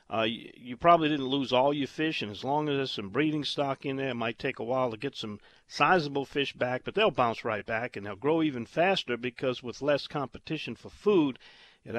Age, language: 50-69, English